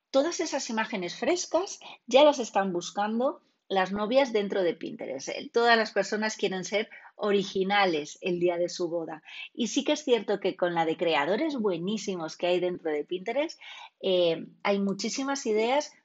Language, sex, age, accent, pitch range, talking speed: Spanish, female, 30-49, Spanish, 180-260 Hz, 165 wpm